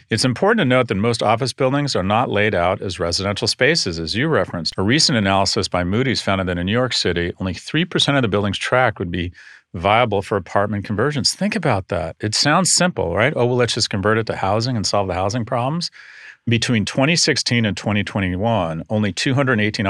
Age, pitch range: 40-59, 95-120 Hz